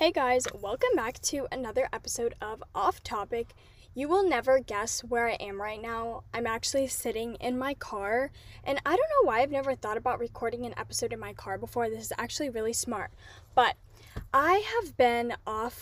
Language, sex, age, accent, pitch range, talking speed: English, female, 10-29, American, 225-275 Hz, 195 wpm